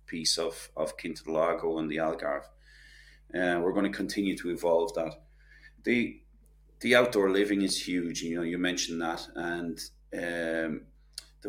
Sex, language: male, English